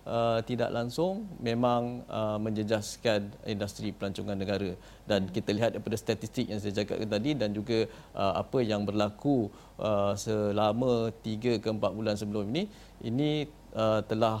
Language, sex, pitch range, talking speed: Malay, male, 105-130 Hz, 145 wpm